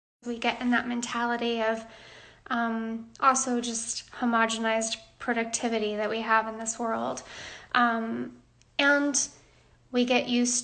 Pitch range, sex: 230-245 Hz, female